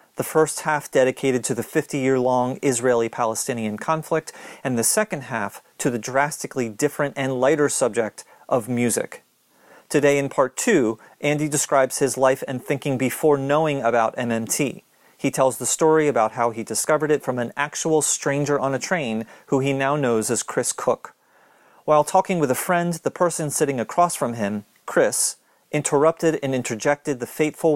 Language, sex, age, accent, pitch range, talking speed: English, male, 40-59, American, 125-155 Hz, 165 wpm